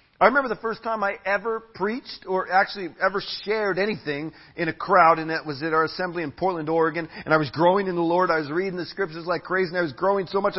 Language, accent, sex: English, American, male